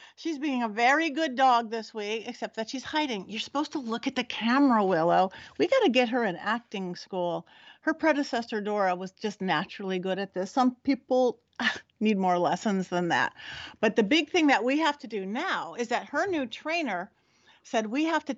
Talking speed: 205 wpm